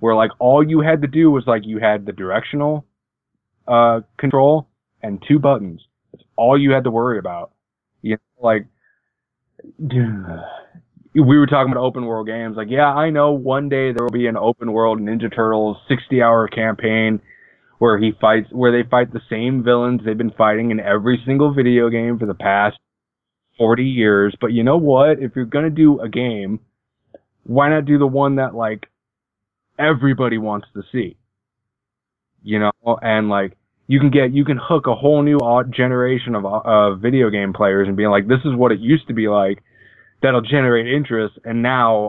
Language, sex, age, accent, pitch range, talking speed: English, male, 20-39, American, 105-130 Hz, 185 wpm